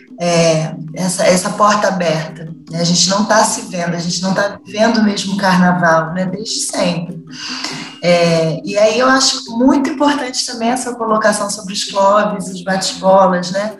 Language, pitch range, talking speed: Portuguese, 200-265 Hz, 160 wpm